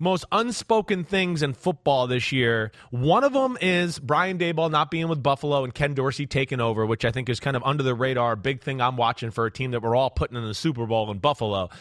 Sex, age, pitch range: male, 30-49, 135-185 Hz